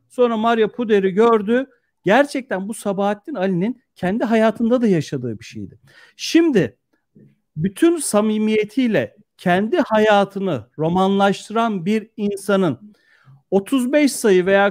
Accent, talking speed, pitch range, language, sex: native, 100 wpm, 180-250 Hz, Turkish, male